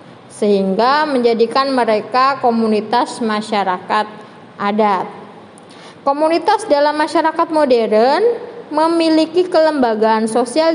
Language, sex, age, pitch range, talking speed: Indonesian, female, 20-39, 235-305 Hz, 75 wpm